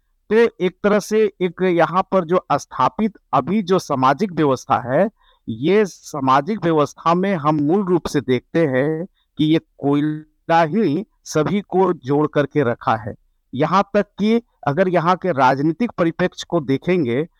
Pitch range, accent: 145-185 Hz, native